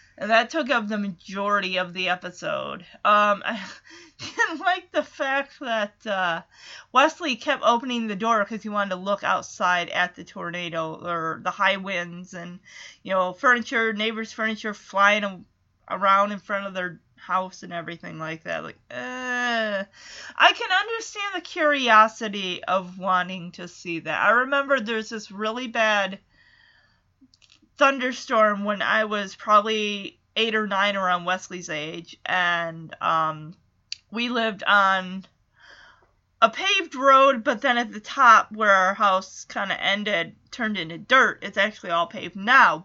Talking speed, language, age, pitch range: 155 wpm, English, 30-49, 185-240 Hz